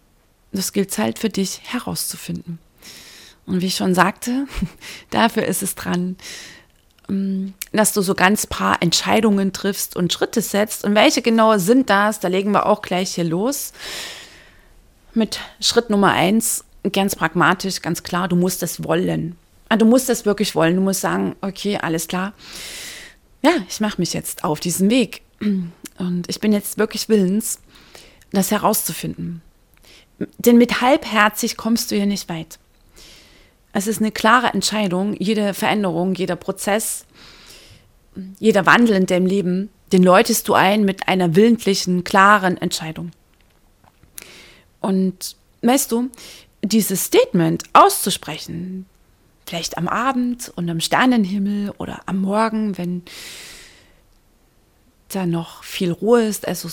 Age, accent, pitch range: 30-49, German, 175-215 Hz